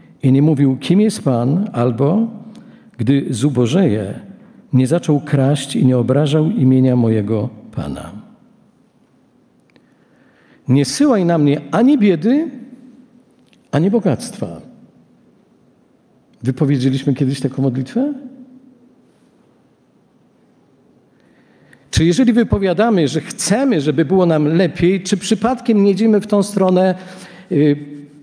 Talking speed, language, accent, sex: 100 wpm, Polish, native, male